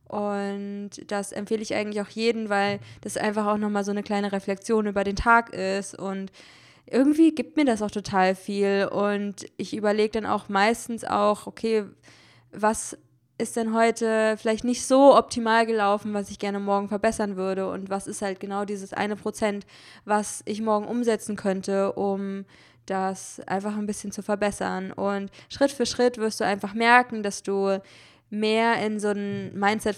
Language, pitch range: German, 195-220 Hz